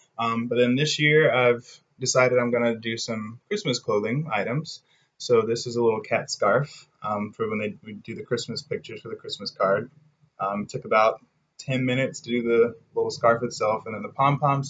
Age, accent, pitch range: 20-39, American, 115-145 Hz